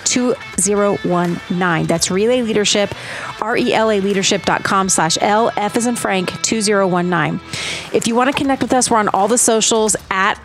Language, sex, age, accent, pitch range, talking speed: English, female, 30-49, American, 195-245 Hz, 170 wpm